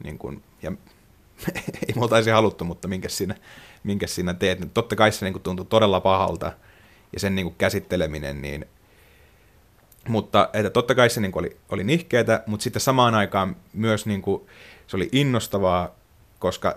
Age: 30-49